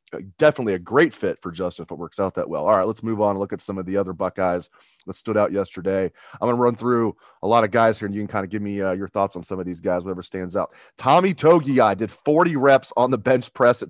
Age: 30-49